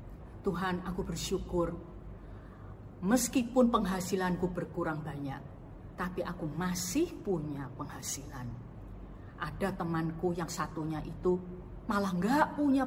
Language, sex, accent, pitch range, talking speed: Indonesian, female, native, 150-205 Hz, 95 wpm